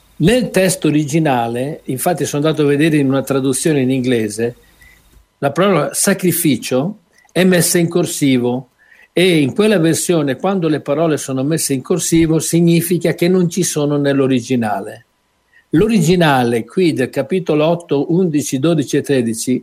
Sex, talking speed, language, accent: male, 140 wpm, Italian, native